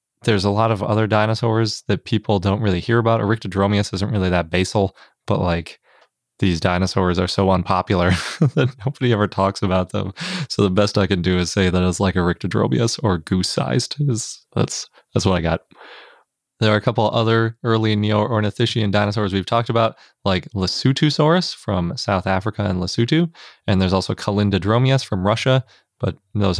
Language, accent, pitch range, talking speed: English, American, 95-115 Hz, 170 wpm